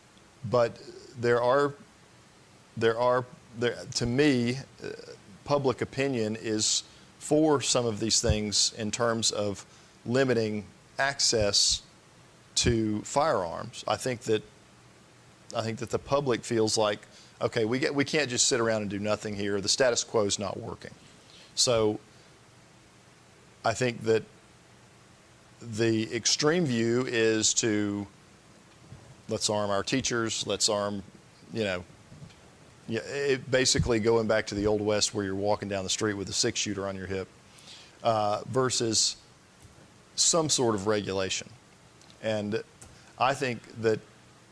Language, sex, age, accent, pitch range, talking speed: English, male, 40-59, American, 105-125 Hz, 135 wpm